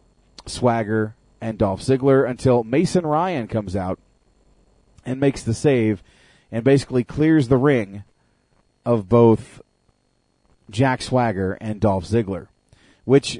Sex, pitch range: male, 105-130 Hz